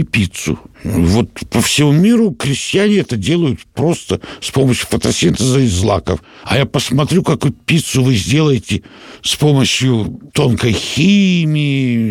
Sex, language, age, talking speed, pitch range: male, Russian, 60-79, 125 wpm, 105-150 Hz